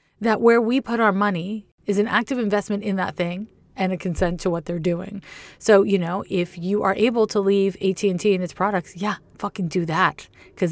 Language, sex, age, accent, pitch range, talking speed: English, female, 30-49, American, 175-220 Hz, 215 wpm